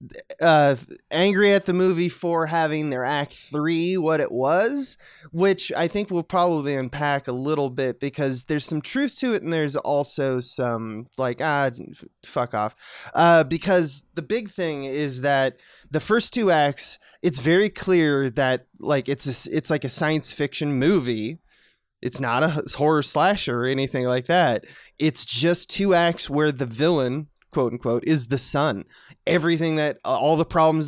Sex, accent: male, American